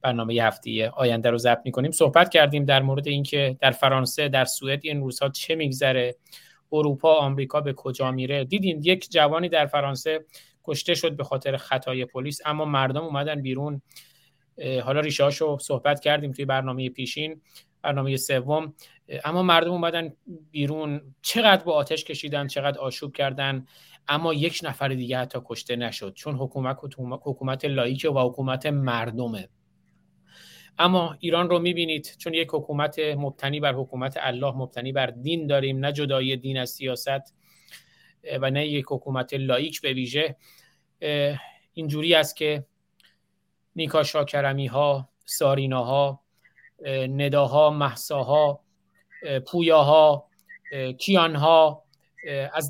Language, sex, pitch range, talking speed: Persian, male, 135-155 Hz, 130 wpm